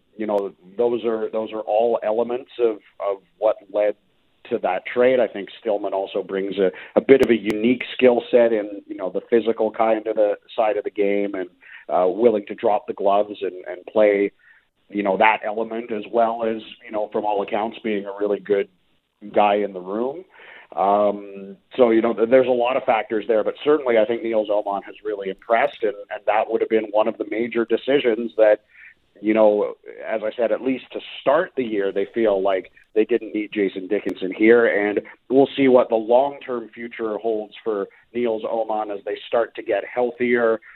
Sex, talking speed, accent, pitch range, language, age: male, 205 wpm, American, 100-120 Hz, English, 40-59